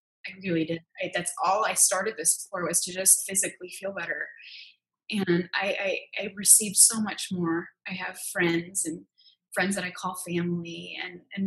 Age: 20-39